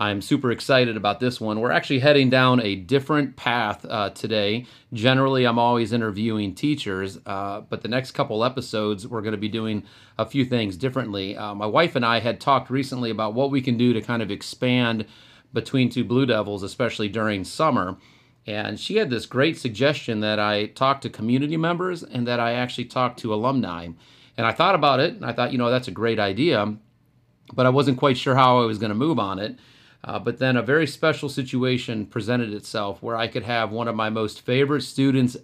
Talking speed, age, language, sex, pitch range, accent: 205 wpm, 40-59, English, male, 110-130 Hz, American